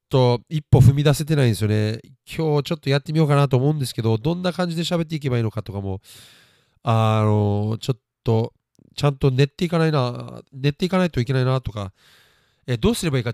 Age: 40-59